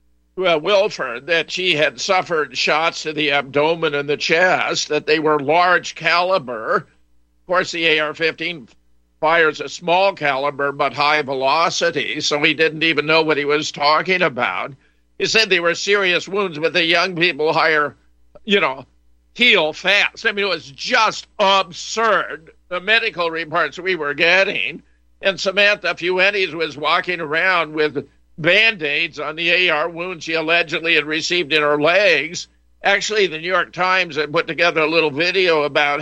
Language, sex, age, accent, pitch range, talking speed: English, male, 50-69, American, 145-180 Hz, 165 wpm